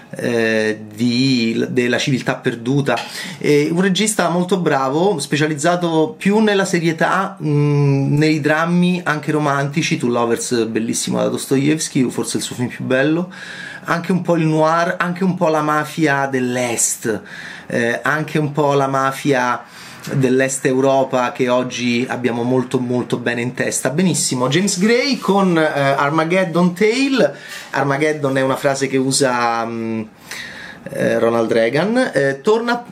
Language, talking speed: Italian, 135 wpm